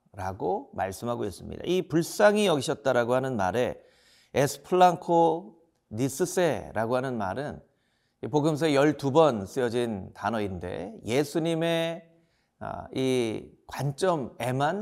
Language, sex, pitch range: Korean, male, 125-170 Hz